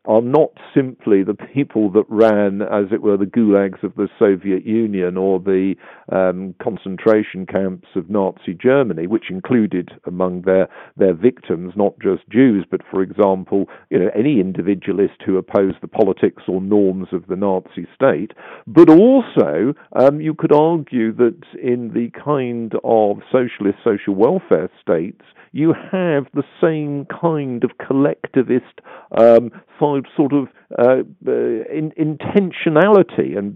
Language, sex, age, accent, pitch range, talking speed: English, male, 50-69, British, 100-140 Hz, 140 wpm